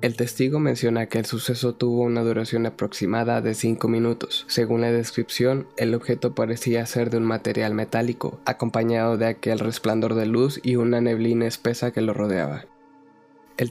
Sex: male